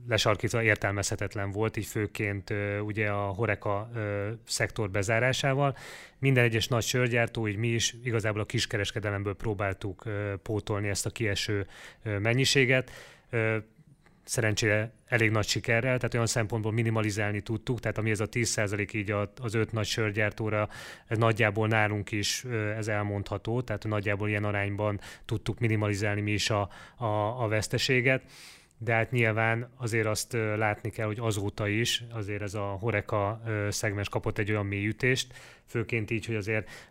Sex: male